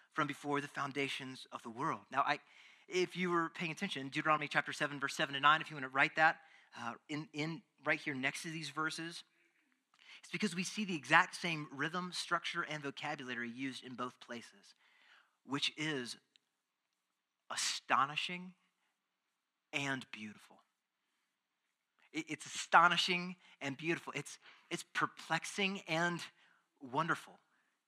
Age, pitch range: 30-49, 145-200 Hz